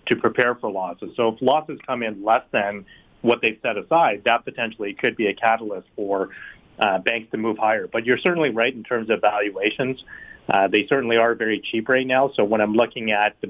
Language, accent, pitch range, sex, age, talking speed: English, American, 105-125 Hz, male, 30-49, 220 wpm